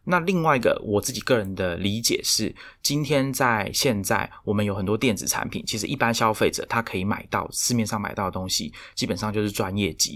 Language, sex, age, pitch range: Chinese, male, 20-39, 100-115 Hz